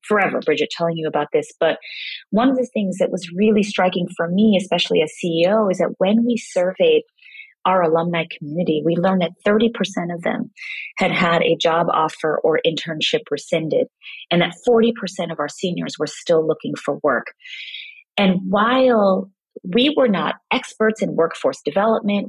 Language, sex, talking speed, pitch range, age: English, female, 165 wpm, 175-225 Hz, 30-49